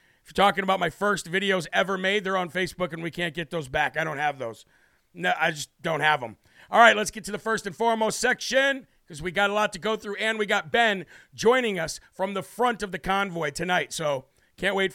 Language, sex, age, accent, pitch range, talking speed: English, male, 50-69, American, 175-210 Hz, 250 wpm